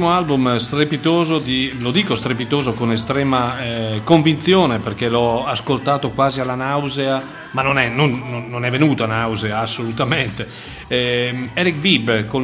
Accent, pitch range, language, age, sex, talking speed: native, 120-150 Hz, Italian, 40-59, male, 130 wpm